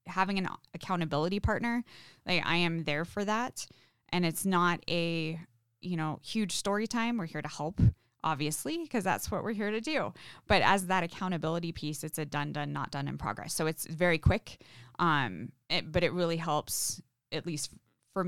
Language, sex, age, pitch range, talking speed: English, female, 20-39, 155-185 Hz, 185 wpm